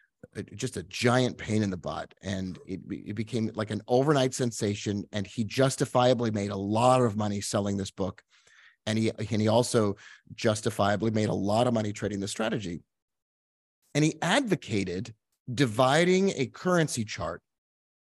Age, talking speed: 30-49, 155 wpm